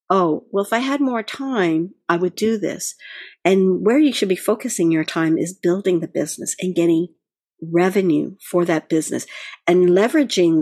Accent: American